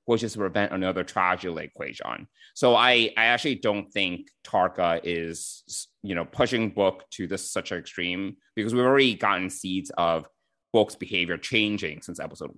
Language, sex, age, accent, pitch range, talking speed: English, male, 30-49, American, 100-130 Hz, 165 wpm